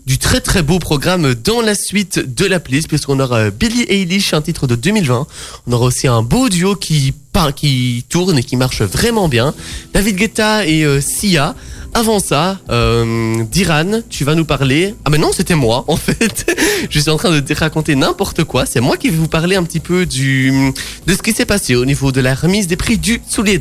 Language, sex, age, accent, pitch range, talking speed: French, male, 20-39, French, 135-185 Hz, 220 wpm